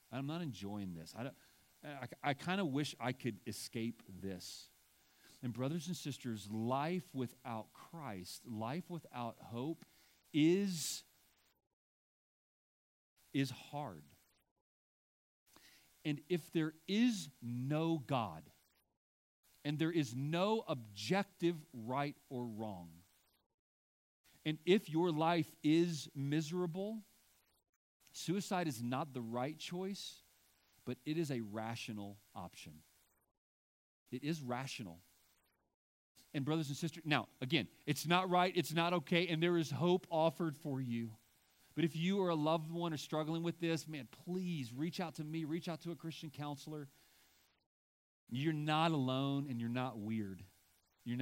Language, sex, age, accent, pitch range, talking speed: English, male, 40-59, American, 100-165 Hz, 130 wpm